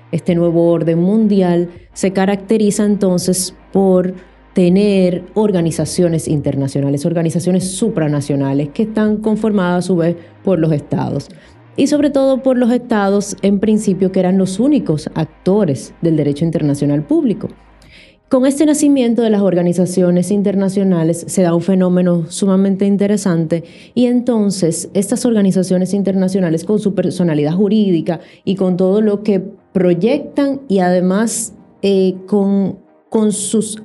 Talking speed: 130 wpm